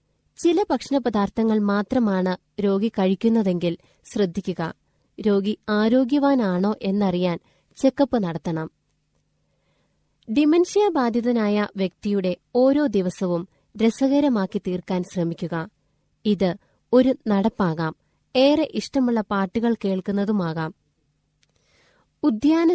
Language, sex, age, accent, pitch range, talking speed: Malayalam, female, 20-39, native, 190-250 Hz, 70 wpm